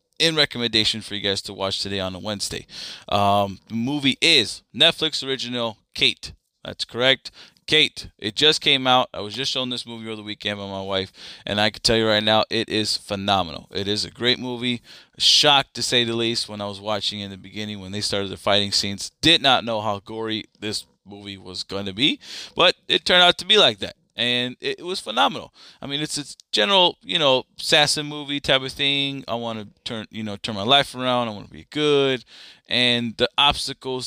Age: 20-39